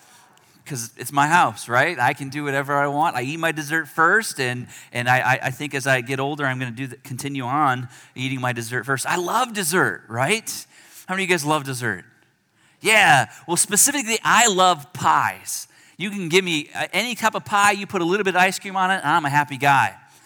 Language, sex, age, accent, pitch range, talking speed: English, male, 30-49, American, 120-155 Hz, 220 wpm